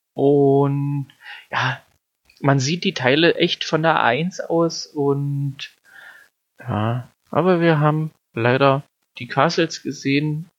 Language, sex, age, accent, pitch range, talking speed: German, male, 30-49, German, 125-160 Hz, 115 wpm